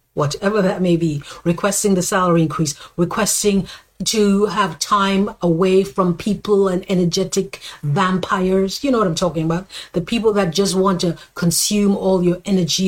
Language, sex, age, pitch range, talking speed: English, female, 50-69, 175-215 Hz, 160 wpm